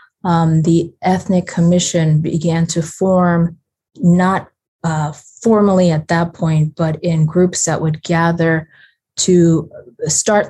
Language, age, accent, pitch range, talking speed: English, 30-49, American, 160-180 Hz, 120 wpm